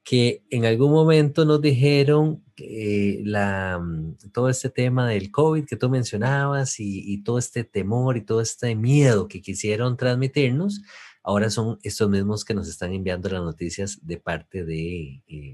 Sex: male